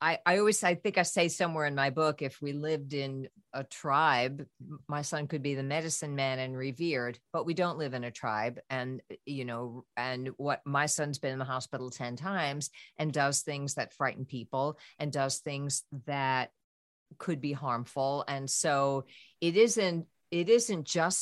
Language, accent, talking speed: English, American, 185 wpm